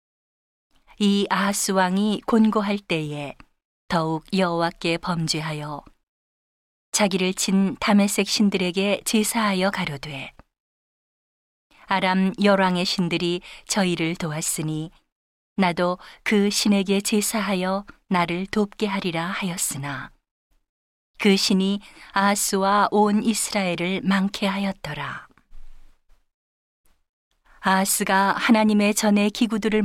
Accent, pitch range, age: native, 170-205 Hz, 40-59